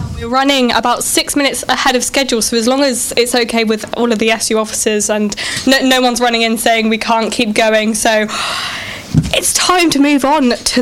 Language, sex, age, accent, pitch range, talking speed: English, female, 10-29, British, 220-255 Hz, 210 wpm